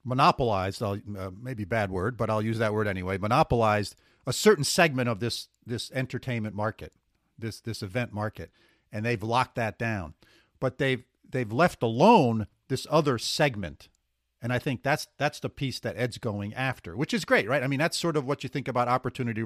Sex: male